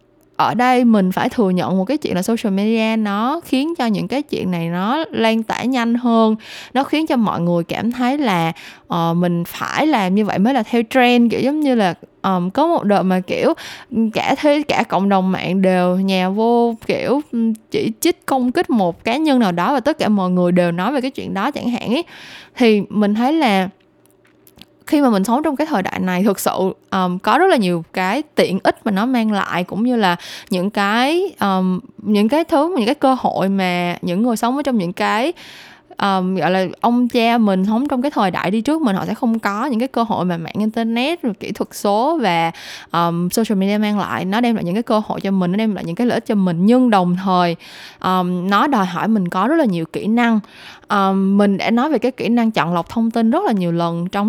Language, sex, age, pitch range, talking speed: Vietnamese, female, 10-29, 185-250 Hz, 235 wpm